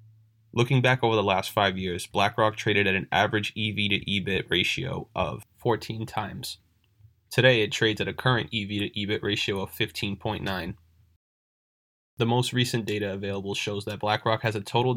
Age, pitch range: 20-39, 100-115 Hz